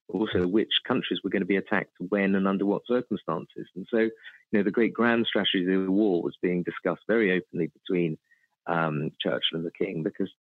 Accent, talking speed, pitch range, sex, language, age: British, 205 wpm, 90-115 Hz, male, English, 40-59